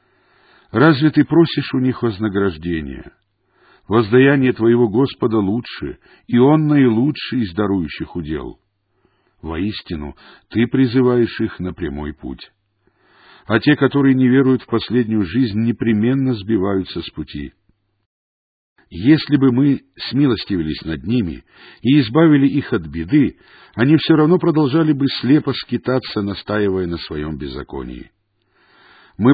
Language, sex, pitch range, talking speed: English, male, 100-135 Hz, 120 wpm